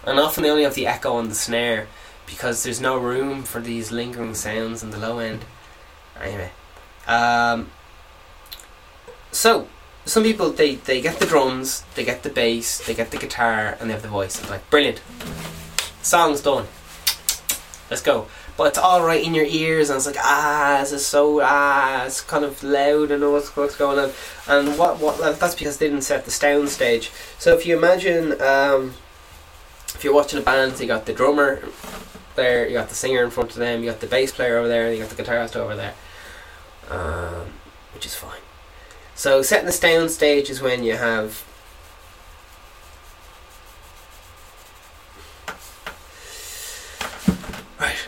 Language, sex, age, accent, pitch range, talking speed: English, male, 10-29, Irish, 100-145 Hz, 170 wpm